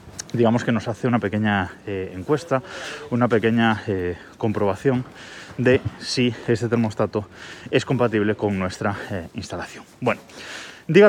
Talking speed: 130 wpm